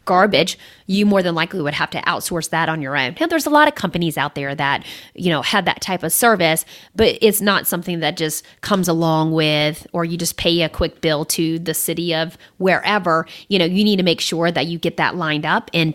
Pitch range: 160-200 Hz